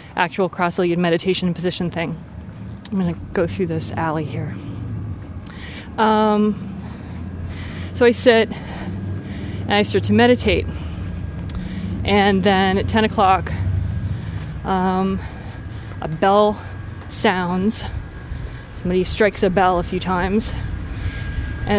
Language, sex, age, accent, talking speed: English, female, 20-39, American, 115 wpm